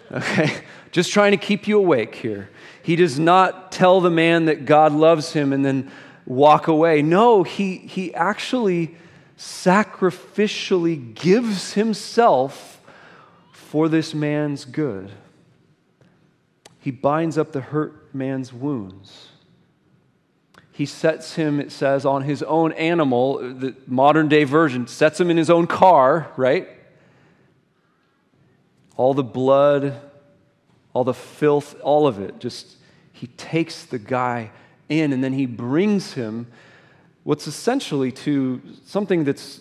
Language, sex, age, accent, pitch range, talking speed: English, male, 40-59, American, 135-175 Hz, 130 wpm